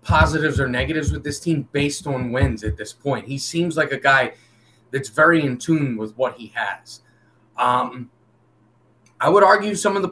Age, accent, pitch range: 30-49, American, 120-160 Hz